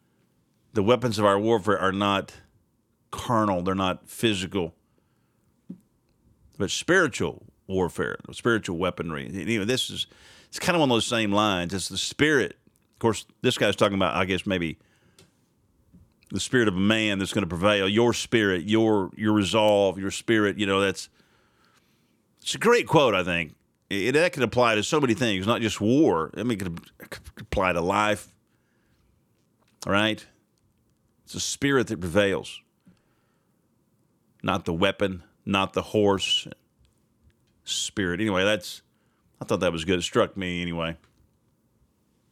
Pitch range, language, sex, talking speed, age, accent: 95-115 Hz, English, male, 150 wpm, 40-59, American